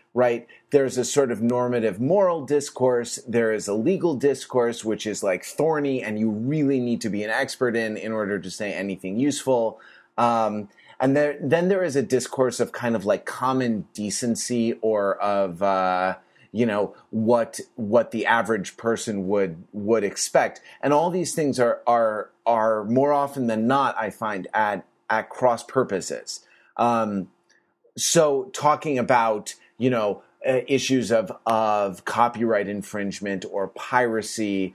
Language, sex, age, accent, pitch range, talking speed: English, male, 30-49, American, 110-140 Hz, 155 wpm